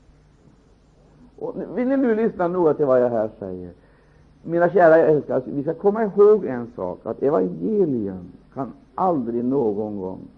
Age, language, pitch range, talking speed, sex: 60-79, Swedish, 125-200 Hz, 155 wpm, male